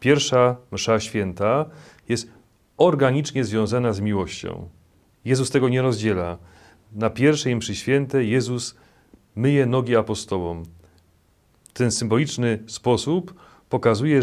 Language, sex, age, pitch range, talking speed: Polish, male, 40-59, 100-125 Hz, 100 wpm